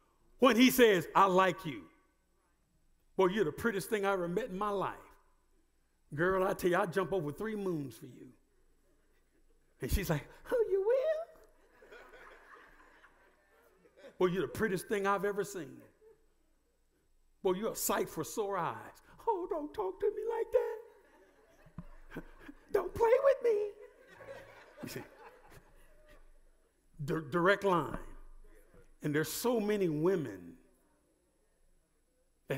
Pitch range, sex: 150-235 Hz, male